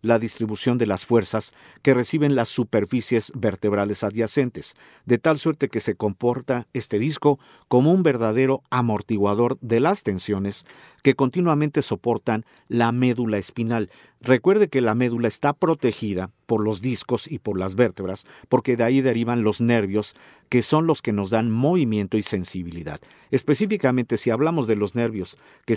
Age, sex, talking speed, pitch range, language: 50-69, male, 155 wpm, 105-135 Hz, Spanish